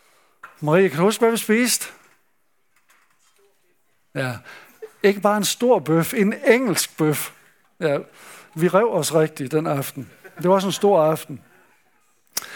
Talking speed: 135 wpm